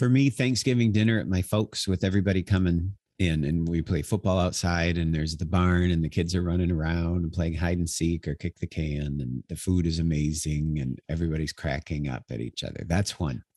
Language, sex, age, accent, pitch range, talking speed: English, male, 50-69, American, 85-105 Hz, 215 wpm